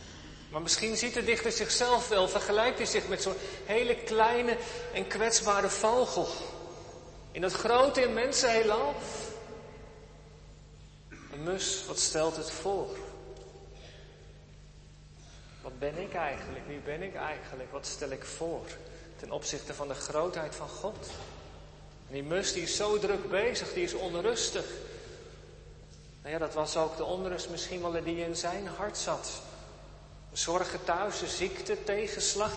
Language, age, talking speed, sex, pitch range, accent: Dutch, 40-59, 145 wpm, male, 165-220 Hz, Dutch